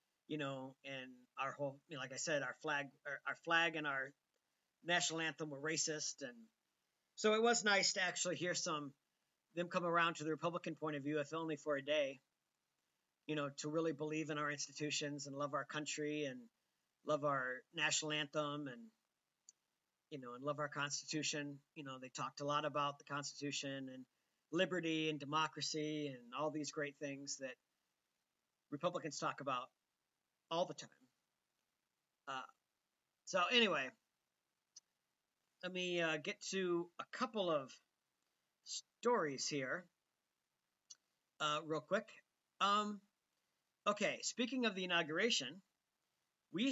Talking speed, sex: 150 wpm, male